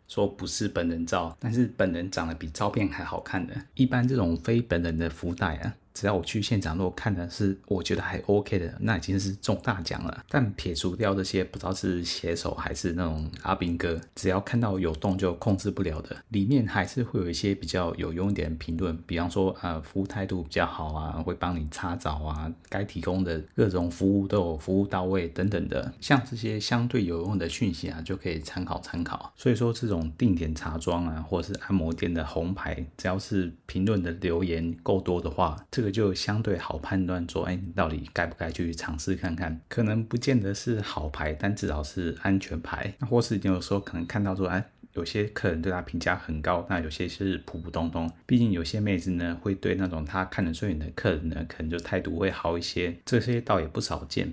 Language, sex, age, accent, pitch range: Chinese, male, 30-49, native, 85-100 Hz